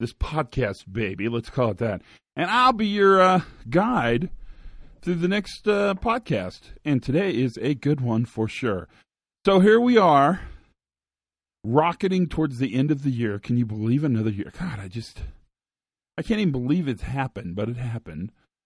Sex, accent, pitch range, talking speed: male, American, 105-155 Hz, 175 wpm